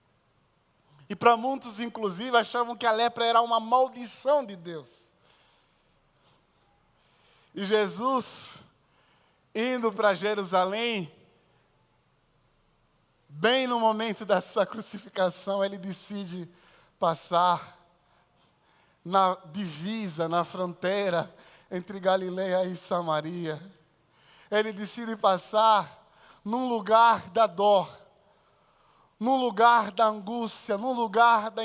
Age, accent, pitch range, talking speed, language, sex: 20-39, Brazilian, 190-260 Hz, 95 wpm, Portuguese, male